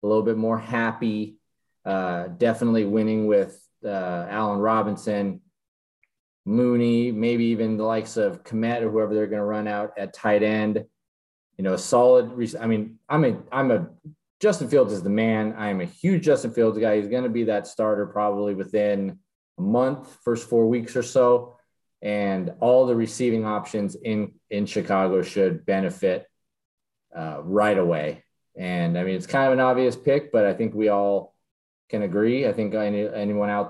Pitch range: 100-125 Hz